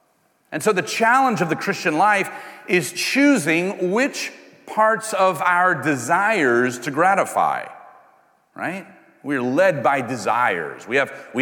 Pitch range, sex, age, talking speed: 140-225 Hz, male, 40-59, 125 wpm